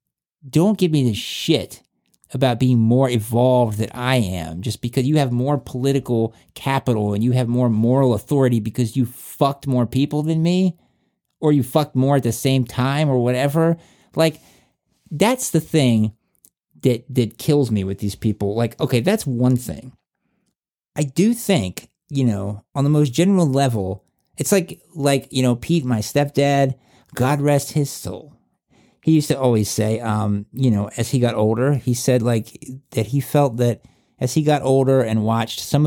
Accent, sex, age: American, male, 50-69